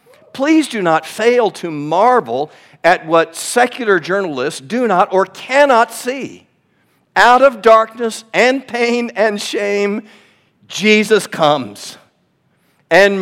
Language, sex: English, male